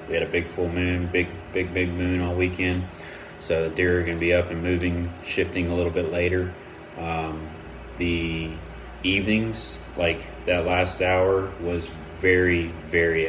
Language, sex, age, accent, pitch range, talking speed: English, male, 30-49, American, 85-90 Hz, 165 wpm